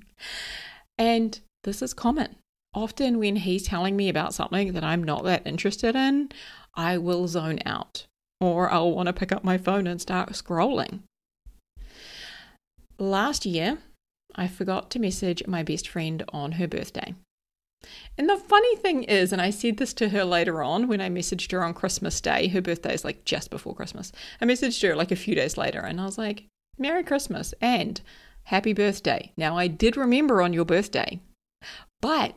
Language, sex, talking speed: English, female, 180 wpm